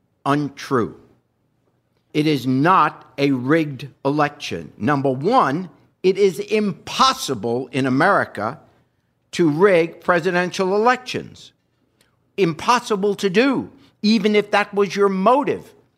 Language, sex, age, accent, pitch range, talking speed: English, male, 60-79, American, 165-220 Hz, 100 wpm